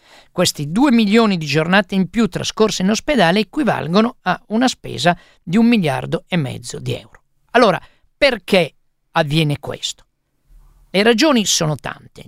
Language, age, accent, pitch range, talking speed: Italian, 50-69, native, 140-210 Hz, 140 wpm